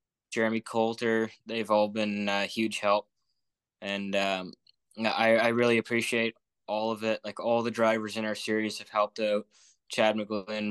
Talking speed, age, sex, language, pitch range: 165 wpm, 20-39, male, English, 105-110 Hz